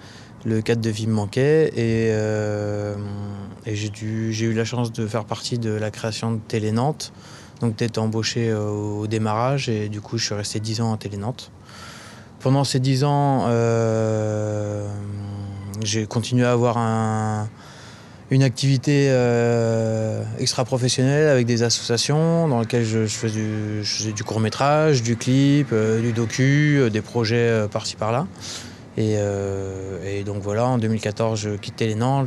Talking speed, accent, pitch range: 160 wpm, French, 105-125 Hz